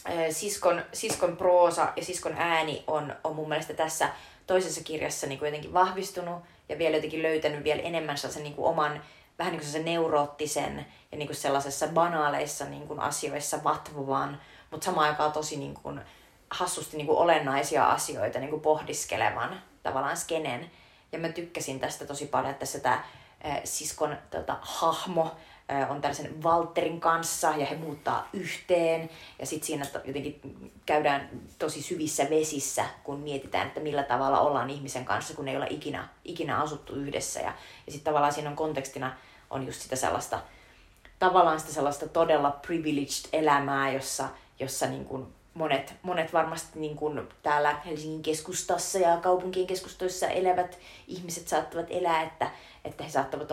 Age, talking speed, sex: 30-49, 150 wpm, female